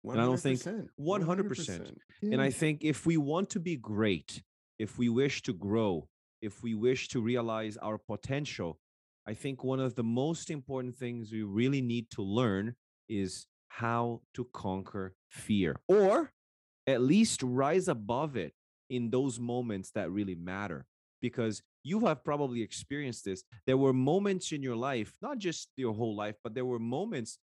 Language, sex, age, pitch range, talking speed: English, male, 30-49, 105-130 Hz, 165 wpm